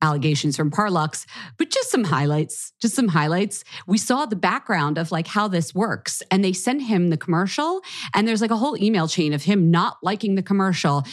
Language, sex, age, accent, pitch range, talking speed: English, female, 40-59, American, 150-200 Hz, 205 wpm